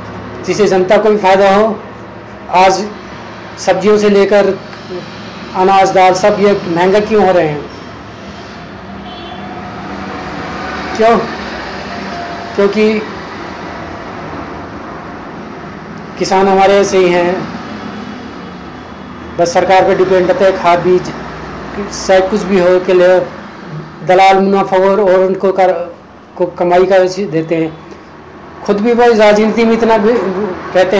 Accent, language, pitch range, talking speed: native, Hindi, 180-200 Hz, 115 wpm